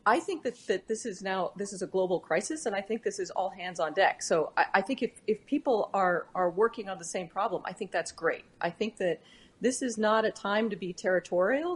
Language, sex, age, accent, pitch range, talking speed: Spanish, female, 30-49, American, 180-230 Hz, 255 wpm